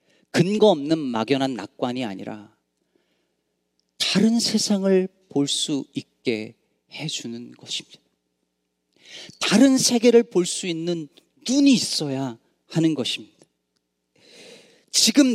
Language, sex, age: Korean, male, 40-59